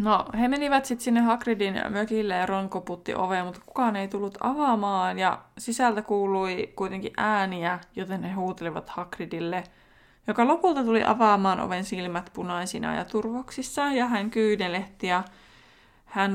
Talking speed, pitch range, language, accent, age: 145 wpm, 180-215 Hz, Finnish, native, 20-39